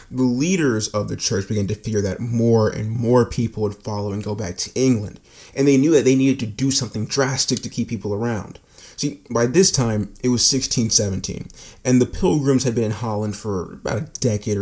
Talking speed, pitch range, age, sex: 215 wpm, 105-125 Hz, 20-39, male